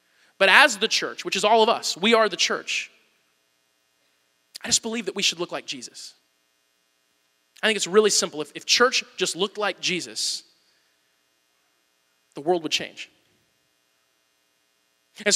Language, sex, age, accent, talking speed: English, male, 20-39, American, 150 wpm